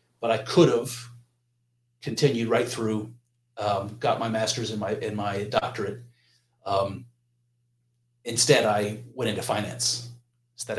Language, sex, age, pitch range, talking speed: English, male, 30-49, 110-125 Hz, 130 wpm